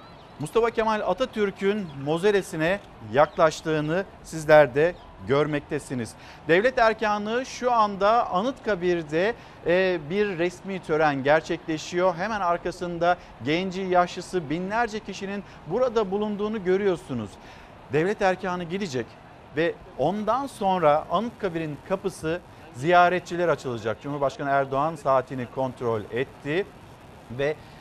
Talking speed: 90 wpm